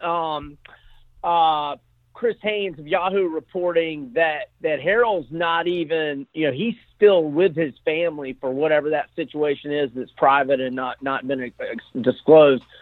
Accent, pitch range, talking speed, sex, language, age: American, 155-200 Hz, 150 wpm, male, English, 40-59